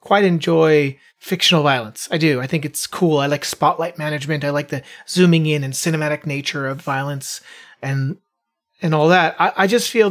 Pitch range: 150-180 Hz